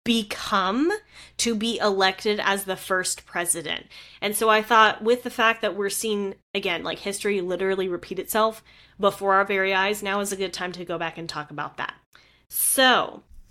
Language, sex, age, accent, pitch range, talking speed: English, female, 10-29, American, 185-230 Hz, 180 wpm